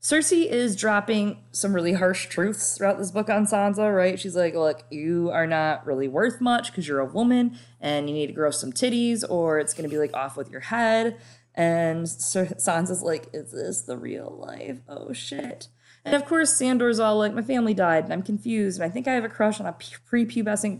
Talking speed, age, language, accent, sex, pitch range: 215 wpm, 20-39, English, American, female, 150-215 Hz